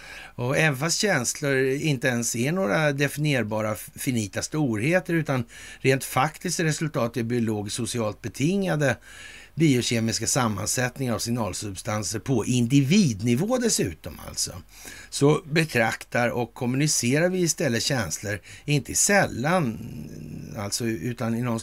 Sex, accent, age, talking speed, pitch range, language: male, native, 60-79, 110 wpm, 110-150 Hz, Swedish